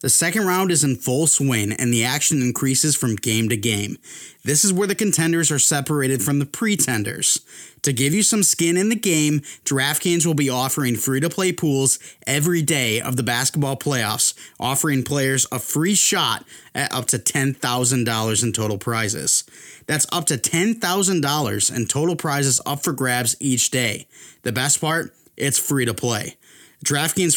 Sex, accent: male, American